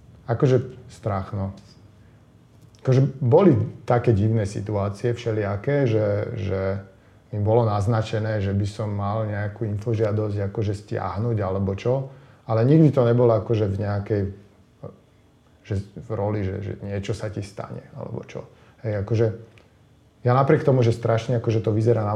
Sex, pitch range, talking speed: male, 105-120 Hz, 140 wpm